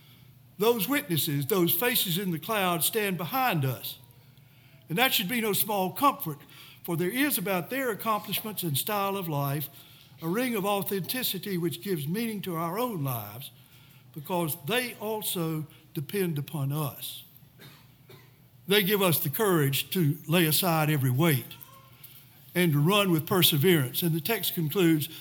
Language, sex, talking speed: English, male, 150 wpm